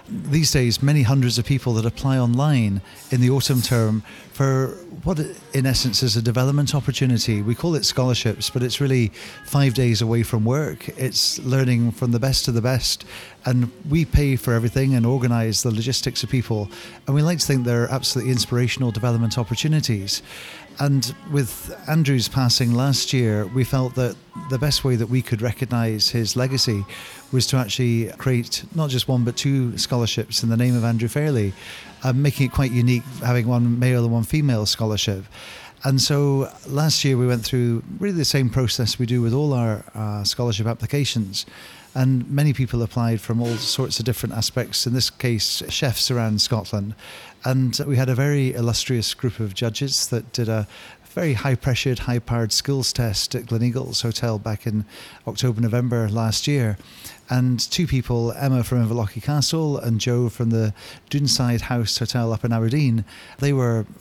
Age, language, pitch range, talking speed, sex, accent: 40-59, English, 115-135 Hz, 175 wpm, male, British